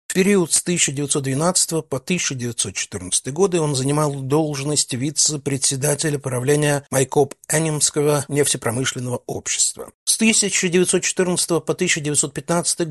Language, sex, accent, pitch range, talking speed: Russian, male, native, 130-155 Hz, 90 wpm